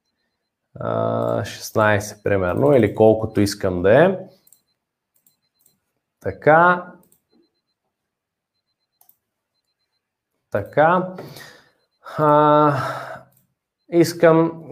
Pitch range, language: 110-150 Hz, Bulgarian